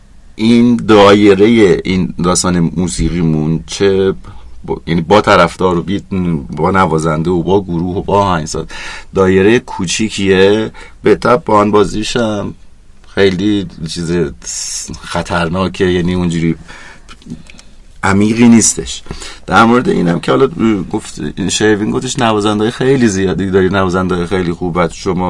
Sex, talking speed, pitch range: male, 120 wpm, 85-105 Hz